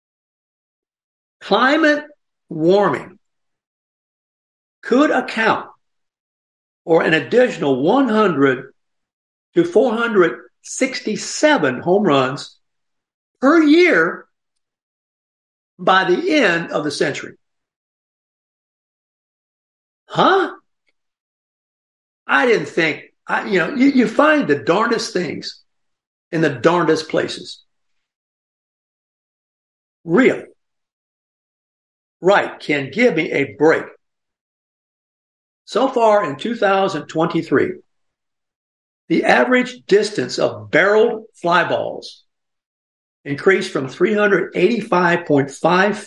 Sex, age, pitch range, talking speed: male, 60-79, 150-230 Hz, 75 wpm